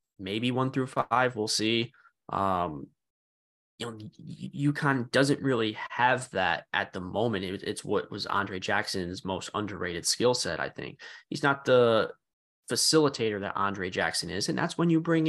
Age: 20-39